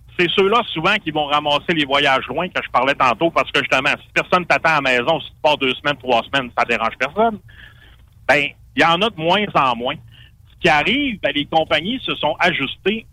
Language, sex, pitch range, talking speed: French, male, 125-175 Hz, 230 wpm